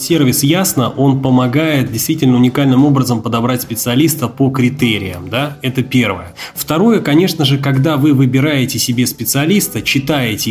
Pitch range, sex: 125-150 Hz, male